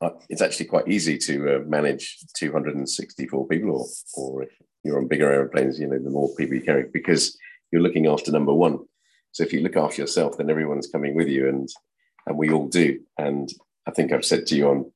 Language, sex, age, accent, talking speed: English, male, 40-59, British, 215 wpm